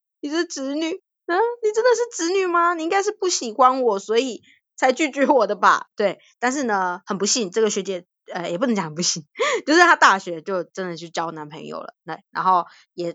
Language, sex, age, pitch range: Chinese, female, 20-39, 190-320 Hz